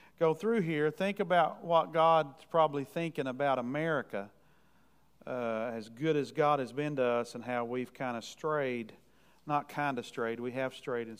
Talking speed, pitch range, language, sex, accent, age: 180 wpm, 125-155 Hz, English, male, American, 40-59